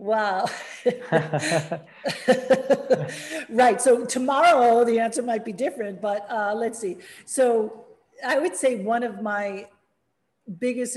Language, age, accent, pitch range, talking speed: English, 40-59, American, 185-235 Hz, 115 wpm